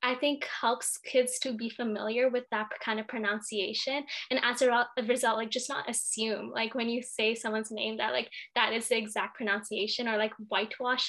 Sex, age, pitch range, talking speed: female, 10-29, 220-250 Hz, 195 wpm